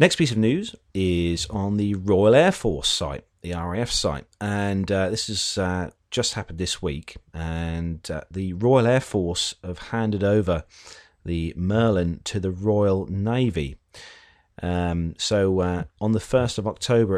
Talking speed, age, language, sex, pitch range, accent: 155 wpm, 30-49, English, male, 90-115 Hz, British